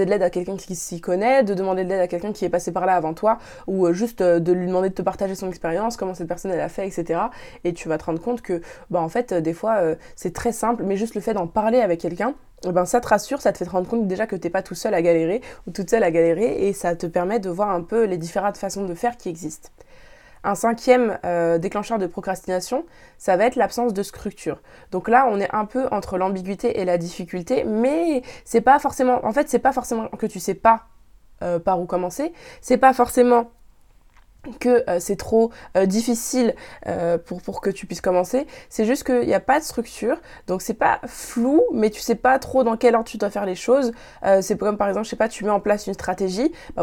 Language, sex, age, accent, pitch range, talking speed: French, female, 20-39, French, 185-240 Hz, 250 wpm